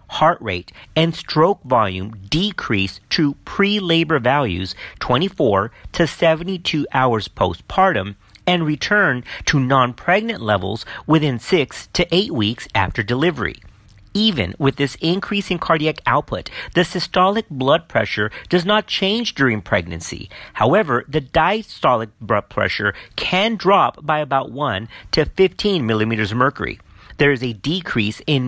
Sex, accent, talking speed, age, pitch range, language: male, American, 135 wpm, 40-59, 110-165 Hz, English